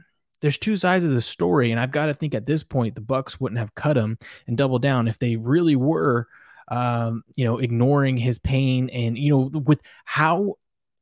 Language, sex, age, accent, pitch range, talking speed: English, male, 20-39, American, 115-145 Hz, 205 wpm